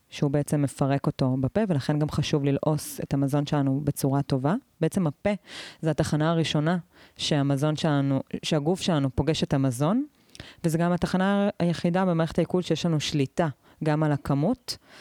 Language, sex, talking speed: Hebrew, female, 150 wpm